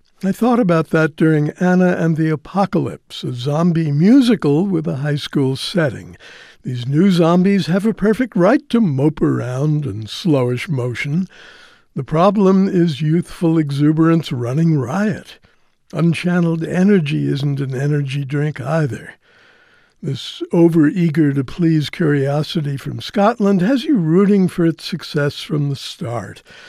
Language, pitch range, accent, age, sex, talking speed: English, 140-185 Hz, American, 60-79, male, 130 wpm